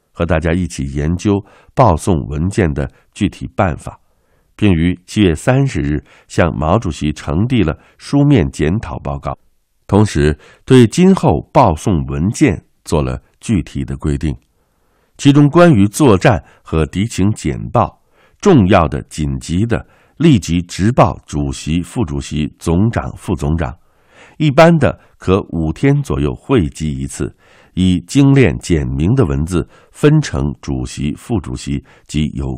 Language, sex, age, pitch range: Chinese, male, 60-79, 70-100 Hz